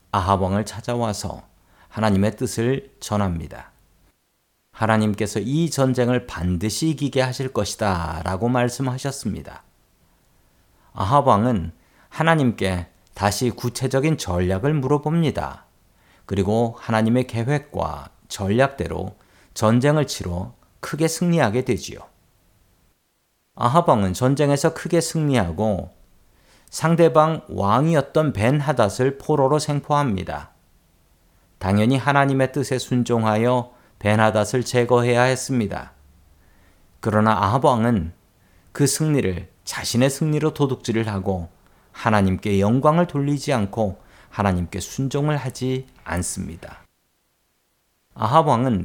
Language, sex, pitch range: Korean, male, 95-135 Hz